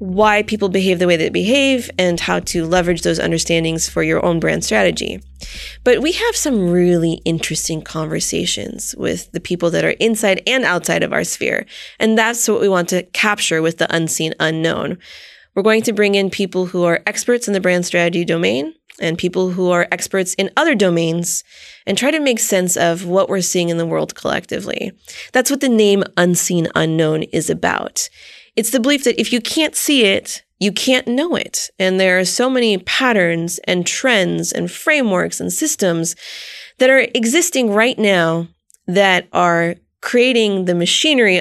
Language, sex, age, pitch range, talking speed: English, female, 20-39, 170-225 Hz, 180 wpm